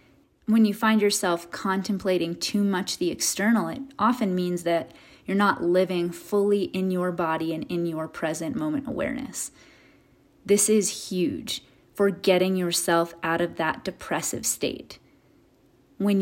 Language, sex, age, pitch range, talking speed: English, female, 30-49, 175-210 Hz, 140 wpm